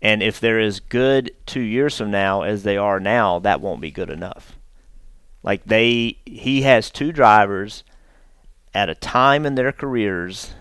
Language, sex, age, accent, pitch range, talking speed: English, male, 40-59, American, 105-140 Hz, 170 wpm